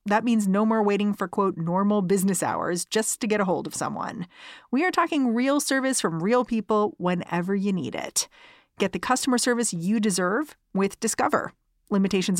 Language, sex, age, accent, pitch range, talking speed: English, female, 30-49, American, 160-210 Hz, 185 wpm